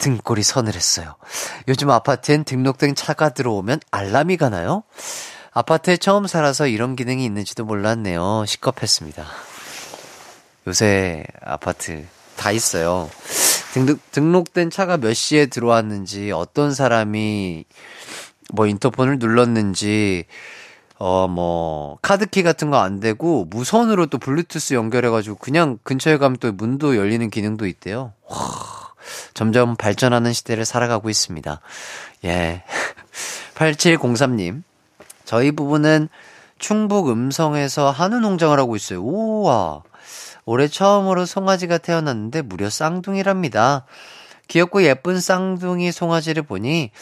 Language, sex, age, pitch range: Korean, male, 30-49, 110-165 Hz